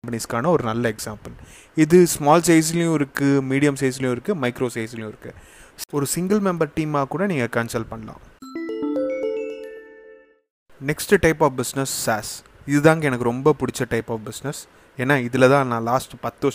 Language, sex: English, male